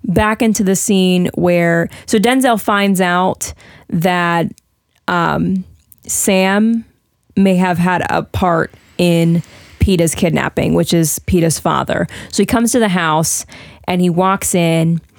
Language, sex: English, female